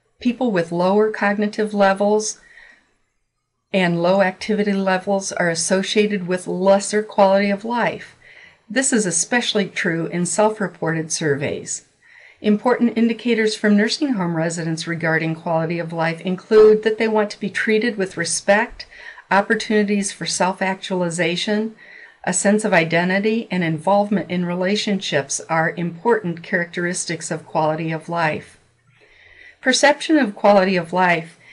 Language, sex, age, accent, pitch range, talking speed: English, female, 50-69, American, 170-215 Hz, 125 wpm